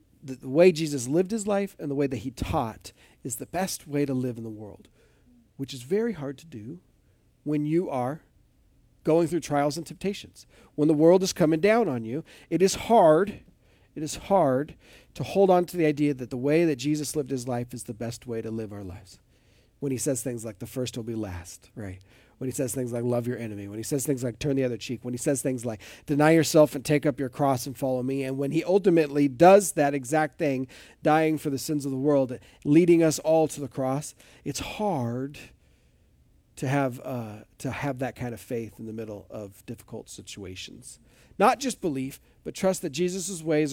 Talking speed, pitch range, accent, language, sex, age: 220 wpm, 120-160 Hz, American, English, male, 40-59